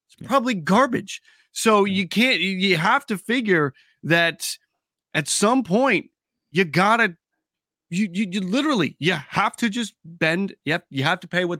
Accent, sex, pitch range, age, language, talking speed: American, male, 150-205 Hz, 30-49, English, 160 wpm